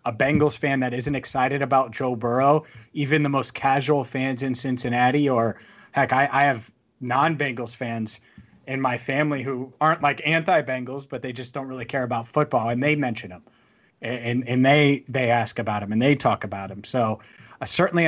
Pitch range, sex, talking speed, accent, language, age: 120-145 Hz, male, 190 wpm, American, English, 30-49